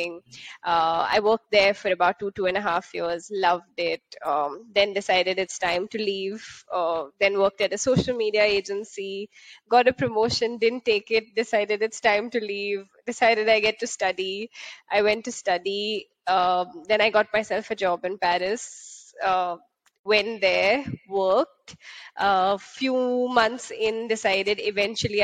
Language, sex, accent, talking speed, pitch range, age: English, female, Indian, 165 wpm, 195-230 Hz, 20-39